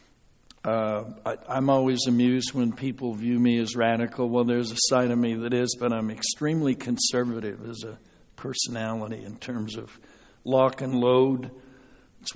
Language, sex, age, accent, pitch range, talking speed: English, male, 60-79, American, 120-135 Hz, 160 wpm